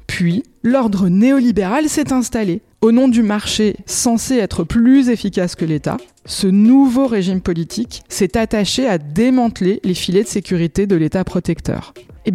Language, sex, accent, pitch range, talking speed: French, female, French, 195-255 Hz, 150 wpm